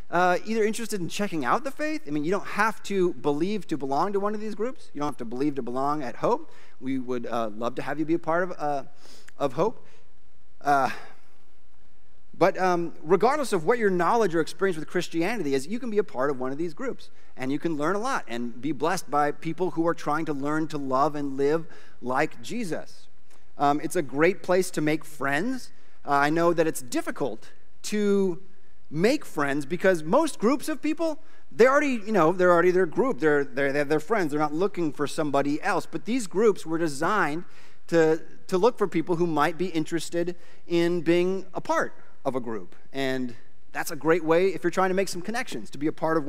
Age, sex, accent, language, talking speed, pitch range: 30-49, male, American, English, 215 wpm, 150-200 Hz